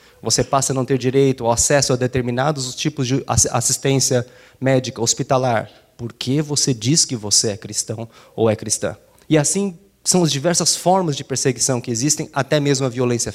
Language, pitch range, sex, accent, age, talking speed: Portuguese, 115-140 Hz, male, Brazilian, 20-39, 175 wpm